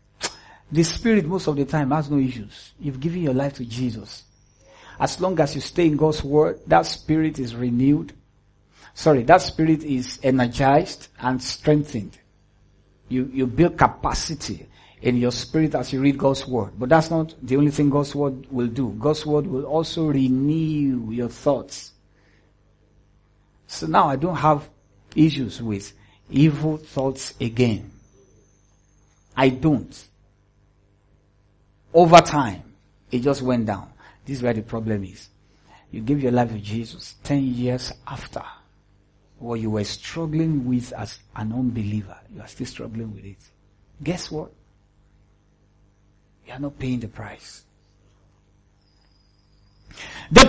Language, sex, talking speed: English, male, 140 wpm